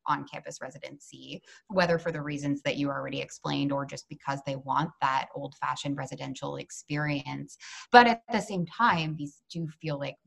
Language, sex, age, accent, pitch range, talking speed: English, female, 20-39, American, 145-185 Hz, 165 wpm